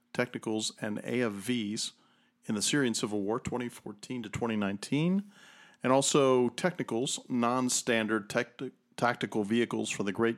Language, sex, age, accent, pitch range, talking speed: English, male, 40-59, American, 110-140 Hz, 135 wpm